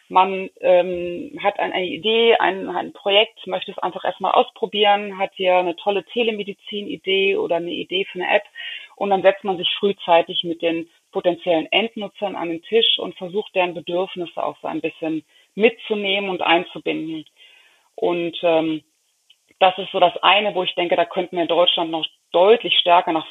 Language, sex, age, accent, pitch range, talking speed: German, female, 30-49, German, 170-215 Hz, 170 wpm